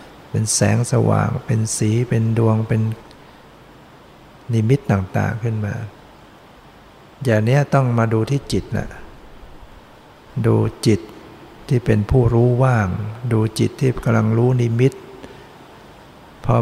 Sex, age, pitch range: male, 60-79, 110-125 Hz